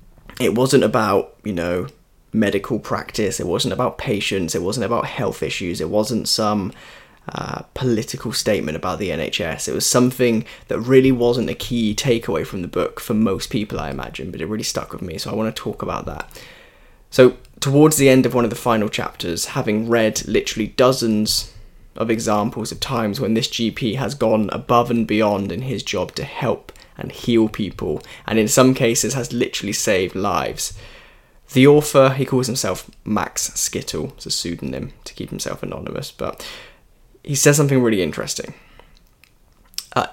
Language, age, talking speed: English, 10-29, 175 wpm